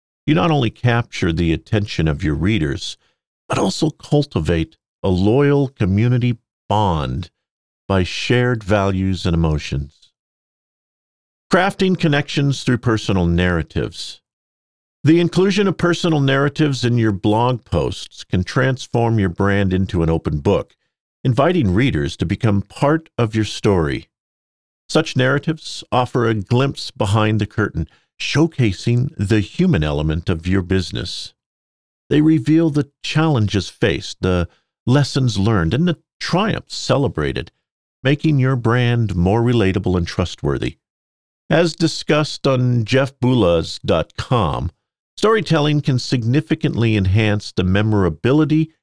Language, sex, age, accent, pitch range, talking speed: English, male, 50-69, American, 90-140 Hz, 115 wpm